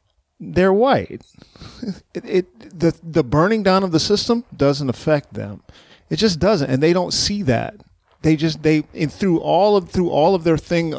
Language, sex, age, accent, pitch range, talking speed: English, male, 40-59, American, 130-200 Hz, 185 wpm